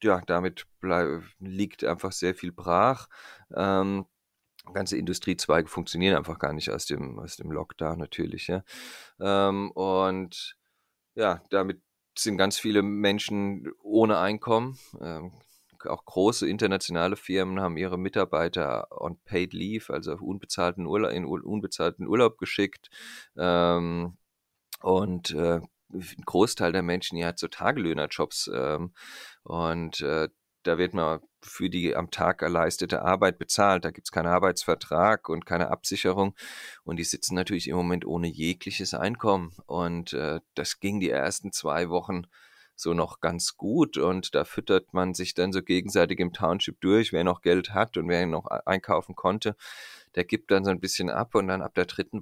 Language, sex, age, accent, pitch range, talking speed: German, male, 30-49, German, 85-100 Hz, 155 wpm